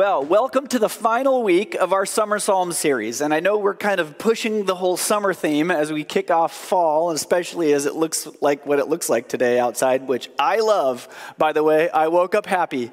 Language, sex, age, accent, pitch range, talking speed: English, male, 30-49, American, 140-195 Hz, 225 wpm